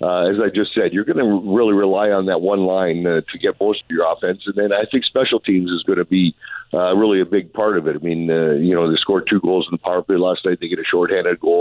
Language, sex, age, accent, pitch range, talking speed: English, male, 50-69, American, 85-100 Hz, 295 wpm